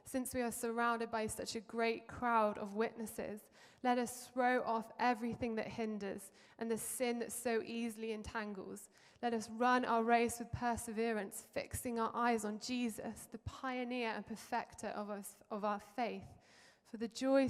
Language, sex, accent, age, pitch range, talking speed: English, female, British, 20-39, 215-240 Hz, 165 wpm